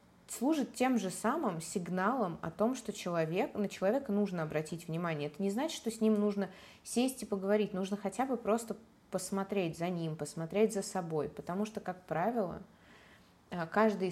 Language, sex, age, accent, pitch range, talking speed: Russian, female, 20-39, native, 170-215 Hz, 160 wpm